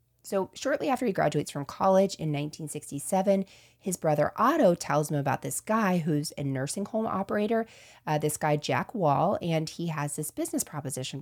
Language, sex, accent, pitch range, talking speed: English, female, American, 145-195 Hz, 175 wpm